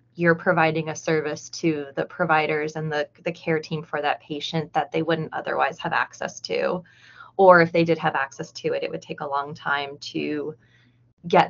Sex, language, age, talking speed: female, English, 20-39, 200 wpm